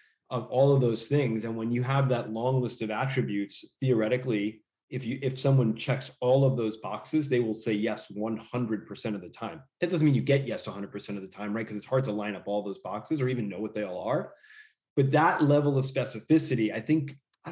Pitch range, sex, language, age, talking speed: 110-135 Hz, male, English, 30-49, 230 wpm